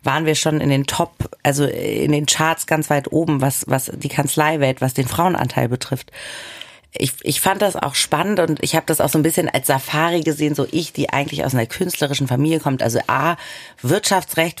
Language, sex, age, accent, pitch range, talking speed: German, female, 40-59, German, 140-165 Hz, 205 wpm